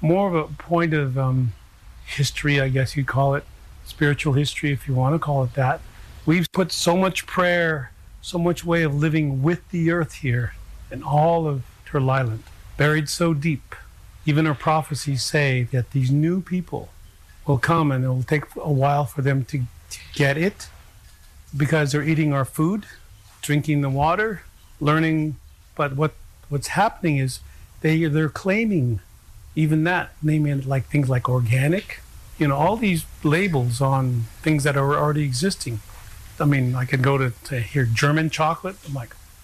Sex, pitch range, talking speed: male, 120-160 Hz, 165 wpm